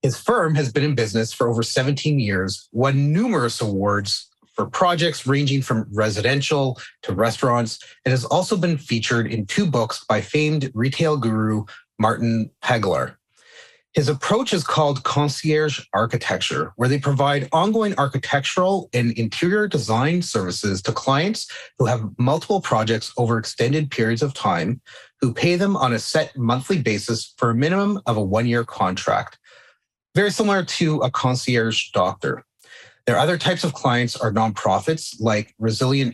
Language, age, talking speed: English, 30-49, 150 wpm